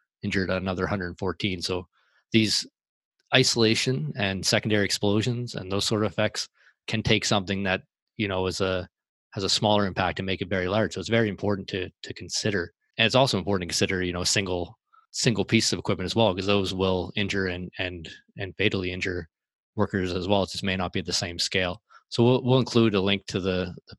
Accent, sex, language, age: American, male, English, 20-39